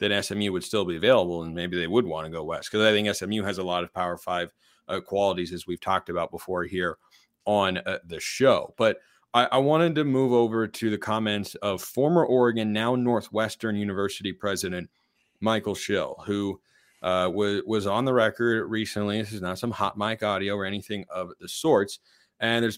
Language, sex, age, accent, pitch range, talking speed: English, male, 30-49, American, 100-125 Hz, 200 wpm